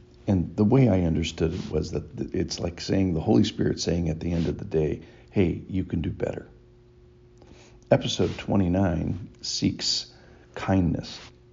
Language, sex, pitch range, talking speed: English, male, 75-100 Hz, 155 wpm